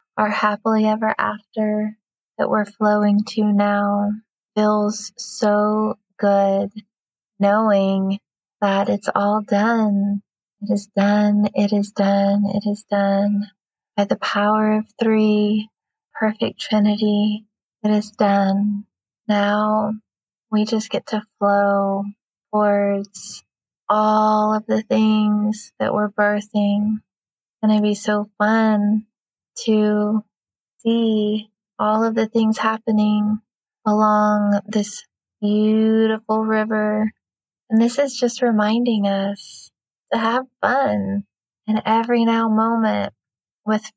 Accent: American